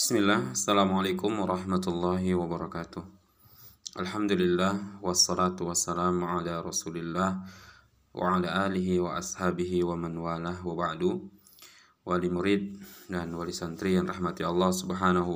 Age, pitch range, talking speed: 20-39, 85-95 Hz, 100 wpm